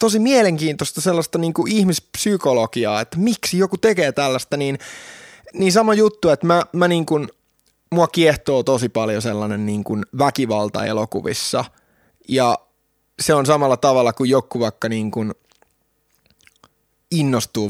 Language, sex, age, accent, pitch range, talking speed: Finnish, male, 20-39, native, 110-160 Hz, 100 wpm